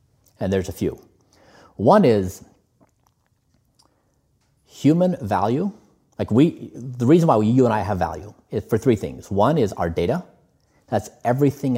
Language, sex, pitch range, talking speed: English, male, 95-120 Hz, 150 wpm